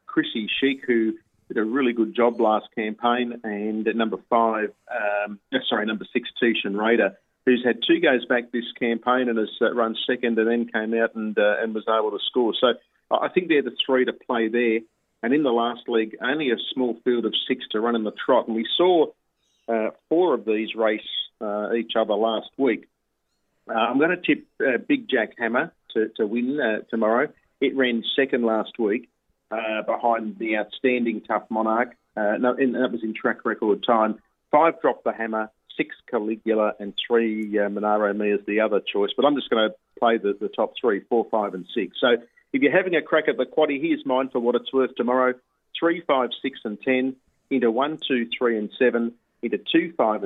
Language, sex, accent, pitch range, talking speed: English, male, Australian, 110-125 Hz, 205 wpm